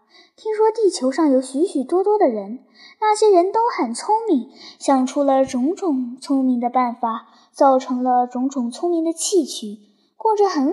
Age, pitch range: 10-29, 245-370 Hz